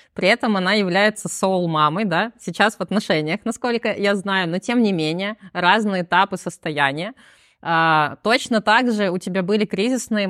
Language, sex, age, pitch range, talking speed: Russian, female, 20-39, 175-210 Hz, 155 wpm